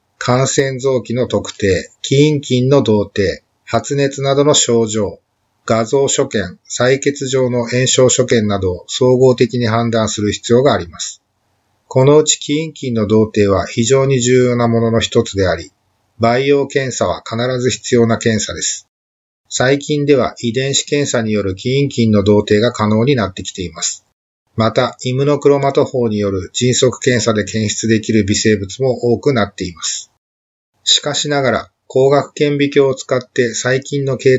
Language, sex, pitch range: Japanese, male, 110-135 Hz